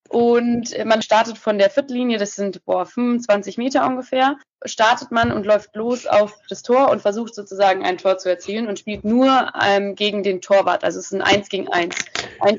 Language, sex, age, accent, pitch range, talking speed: German, female, 20-39, German, 210-240 Hz, 200 wpm